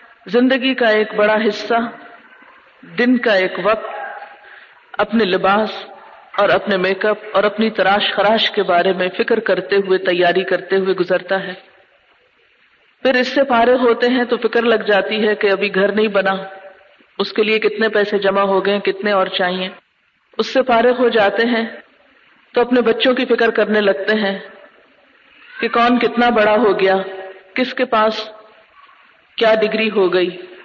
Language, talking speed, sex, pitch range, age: Urdu, 165 wpm, female, 195-245 Hz, 50-69